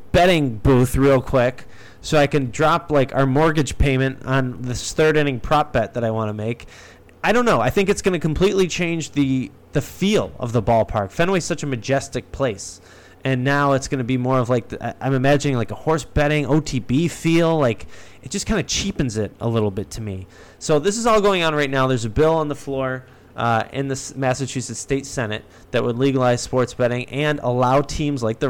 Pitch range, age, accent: 115-150 Hz, 20-39, American